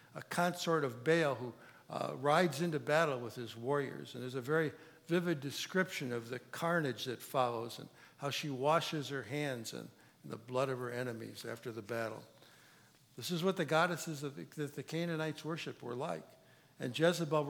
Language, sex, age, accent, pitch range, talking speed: English, male, 60-79, American, 130-165 Hz, 180 wpm